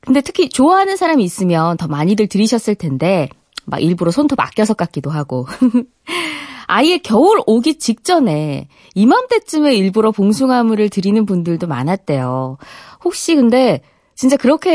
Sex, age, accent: female, 20-39, native